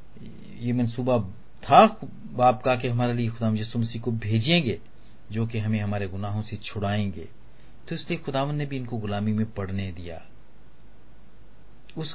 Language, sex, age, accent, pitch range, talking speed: Hindi, male, 40-59, native, 105-135 Hz, 150 wpm